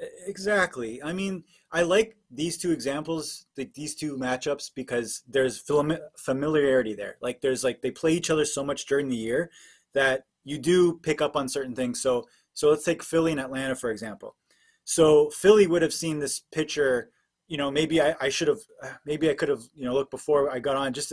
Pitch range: 135-170 Hz